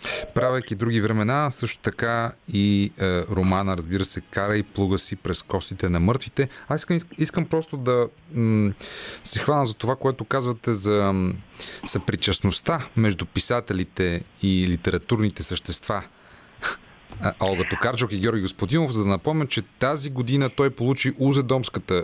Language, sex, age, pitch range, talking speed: Bulgarian, male, 30-49, 100-130 Hz, 140 wpm